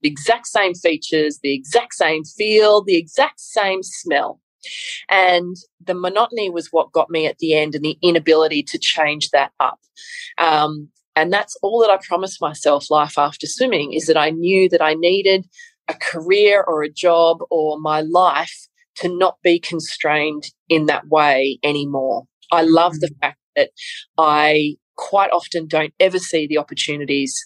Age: 20-39